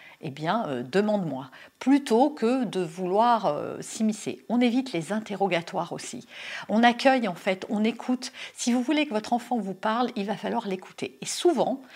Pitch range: 195-260 Hz